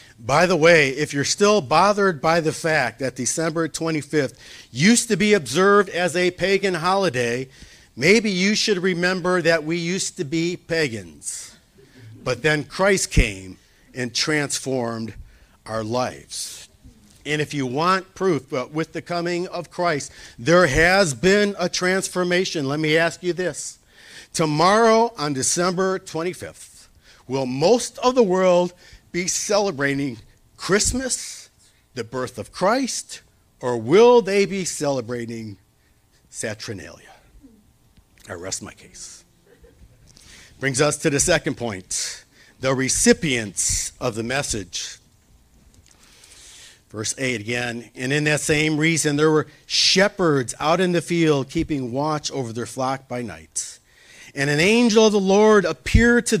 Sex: male